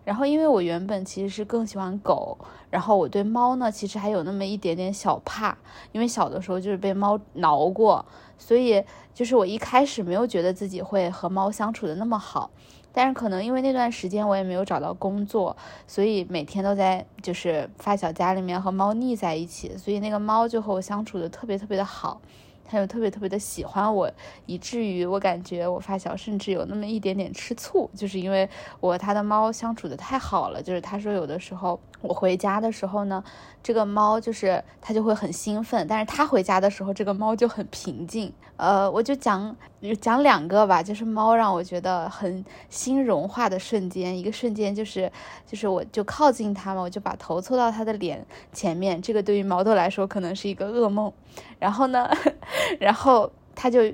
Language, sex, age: Chinese, female, 20-39